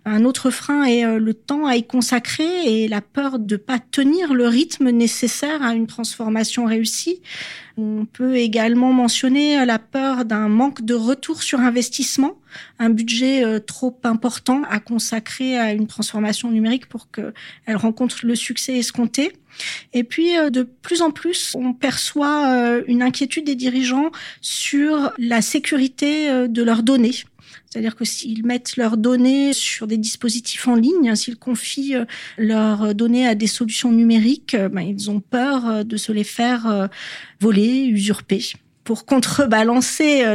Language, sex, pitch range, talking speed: French, female, 225-265 Hz, 150 wpm